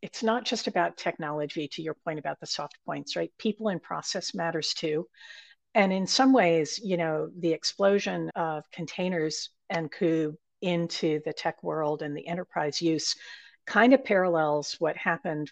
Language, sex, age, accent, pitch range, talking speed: English, female, 50-69, American, 165-220 Hz, 165 wpm